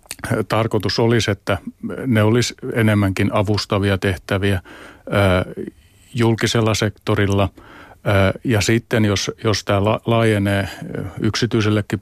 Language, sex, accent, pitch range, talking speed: Finnish, male, native, 95-115 Hz, 85 wpm